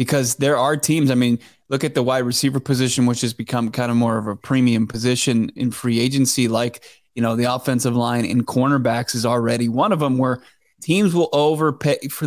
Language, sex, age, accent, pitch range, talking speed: English, male, 20-39, American, 120-140 Hz, 210 wpm